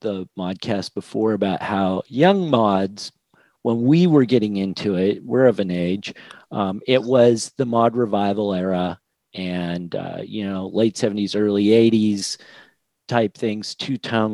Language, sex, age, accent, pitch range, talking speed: English, male, 40-59, American, 105-135 Hz, 150 wpm